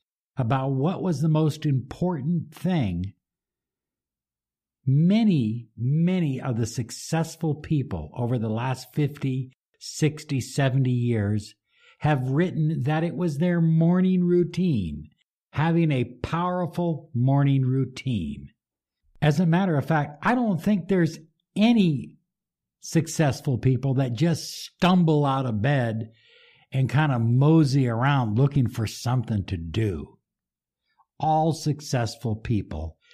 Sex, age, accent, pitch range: male, 60-79, American, 110-160 Hz